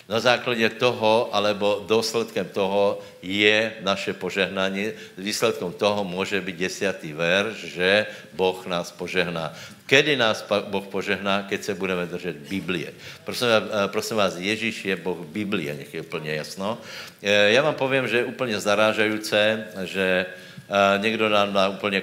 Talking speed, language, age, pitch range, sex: 135 wpm, Slovak, 60-79, 95-115 Hz, male